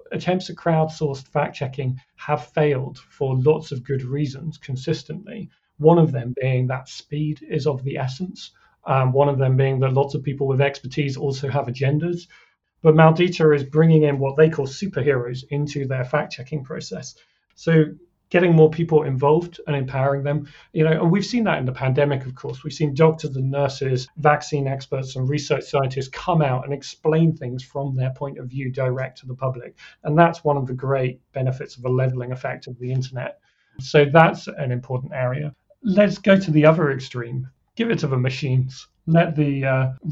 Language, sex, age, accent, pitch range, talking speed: English, male, 40-59, British, 130-160 Hz, 190 wpm